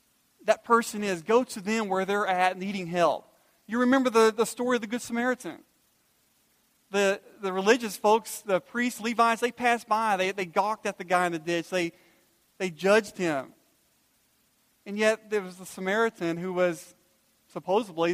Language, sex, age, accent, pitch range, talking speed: English, male, 40-59, American, 170-215 Hz, 170 wpm